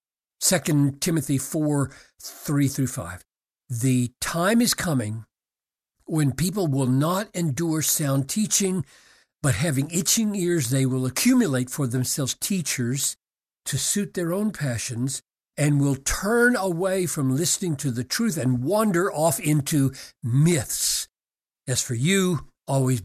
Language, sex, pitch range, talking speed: English, male, 130-170 Hz, 125 wpm